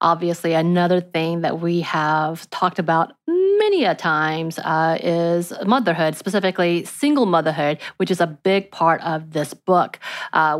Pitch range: 170-210 Hz